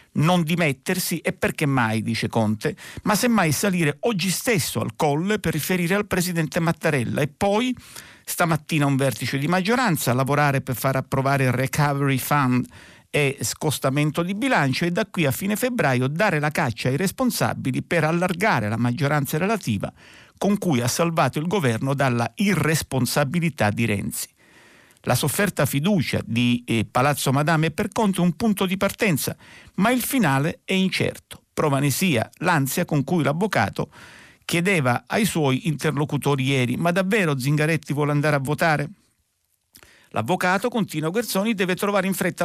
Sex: male